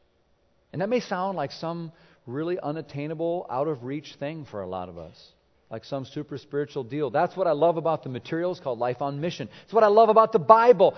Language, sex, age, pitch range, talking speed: English, male, 40-59, 155-210 Hz, 210 wpm